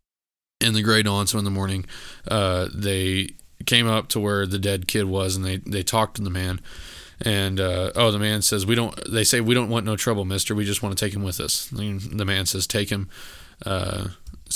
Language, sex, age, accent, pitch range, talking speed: English, male, 20-39, American, 95-110 Hz, 225 wpm